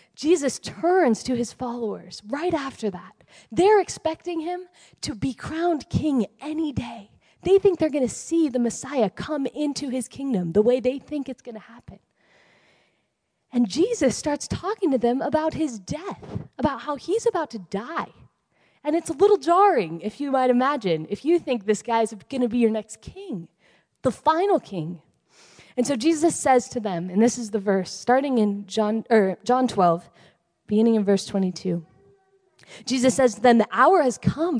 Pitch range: 210-315 Hz